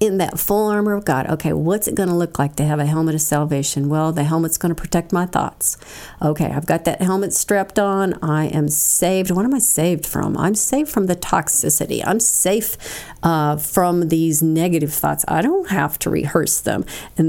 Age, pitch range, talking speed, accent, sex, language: 50-69, 155-195 Hz, 210 wpm, American, female, English